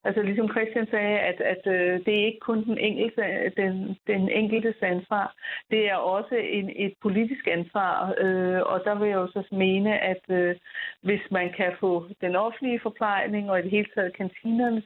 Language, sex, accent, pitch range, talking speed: Danish, female, native, 185-215 Hz, 195 wpm